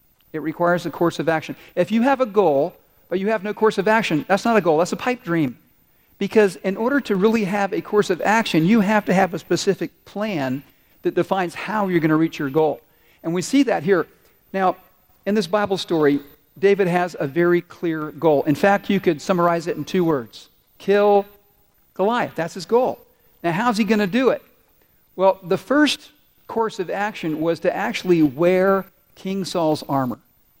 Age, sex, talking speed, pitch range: 50-69, male, 195 wpm, 165-205 Hz